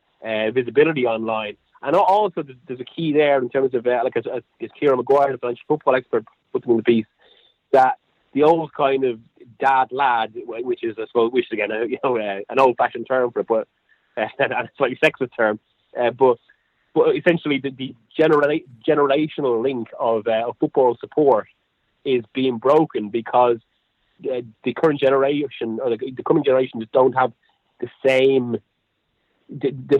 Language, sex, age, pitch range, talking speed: English, male, 30-49, 120-150 Hz, 185 wpm